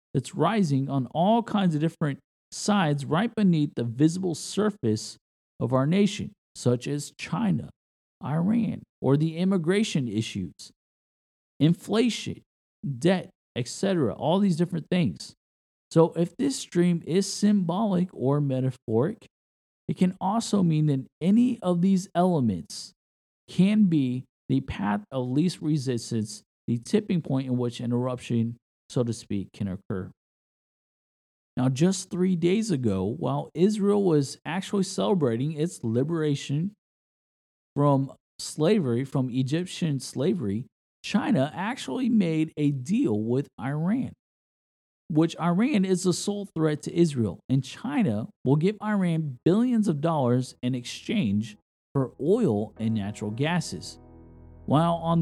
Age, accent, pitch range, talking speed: 50-69, American, 125-185 Hz, 125 wpm